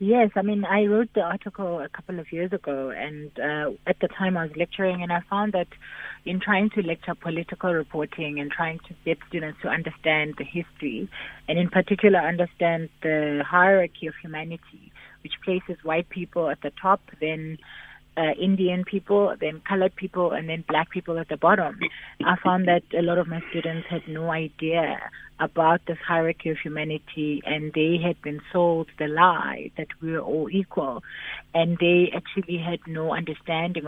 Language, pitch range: English, 155-180 Hz